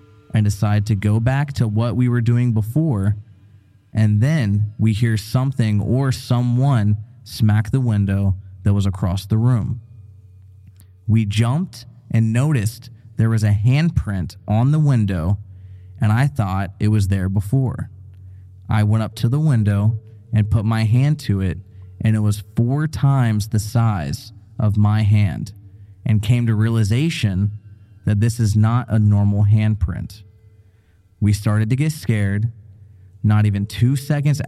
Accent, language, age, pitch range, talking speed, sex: American, English, 20-39, 100-120 Hz, 150 wpm, male